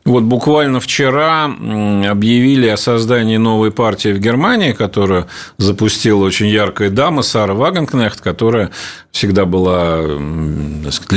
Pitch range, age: 100-130 Hz, 40-59